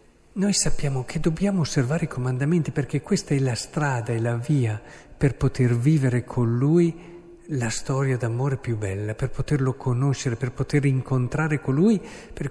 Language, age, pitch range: Italian, 50-69, 130-170 Hz